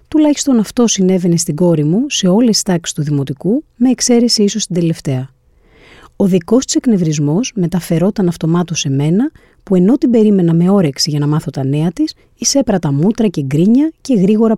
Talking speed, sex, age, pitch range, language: 180 wpm, female, 30-49, 150-220 Hz, Greek